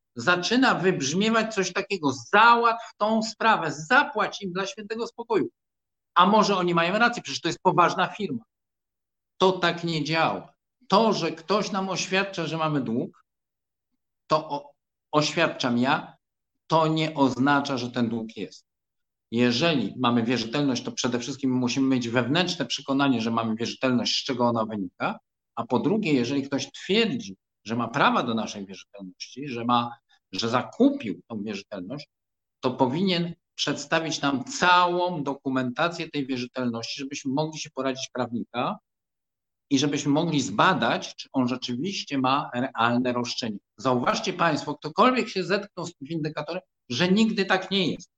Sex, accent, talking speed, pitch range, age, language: male, native, 145 wpm, 130-190 Hz, 50-69, Polish